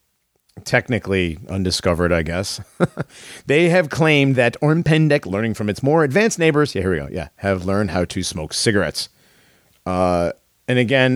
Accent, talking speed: American, 155 wpm